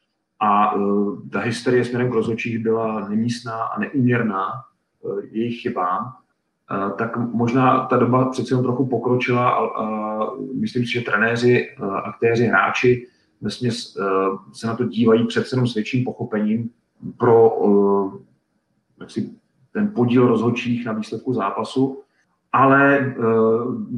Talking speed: 130 wpm